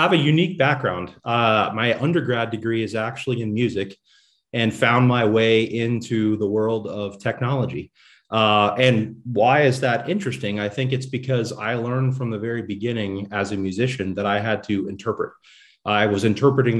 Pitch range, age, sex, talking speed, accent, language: 105-125 Hz, 30-49, male, 175 wpm, American, English